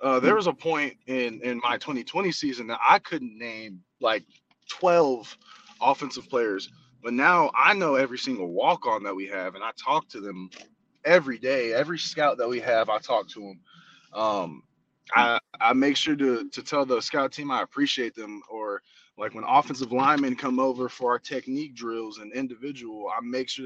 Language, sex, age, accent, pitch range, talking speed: English, male, 20-39, American, 120-145 Hz, 190 wpm